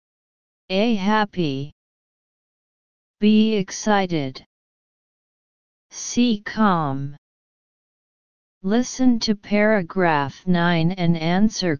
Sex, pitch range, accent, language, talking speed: female, 165-215 Hz, American, English, 60 wpm